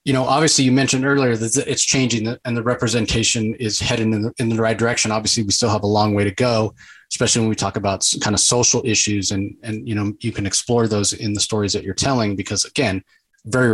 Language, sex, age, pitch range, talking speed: English, male, 30-49, 105-130 Hz, 240 wpm